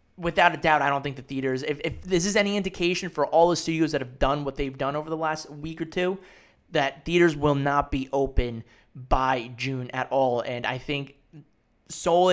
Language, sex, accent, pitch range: English, male, American, 135-165 Hz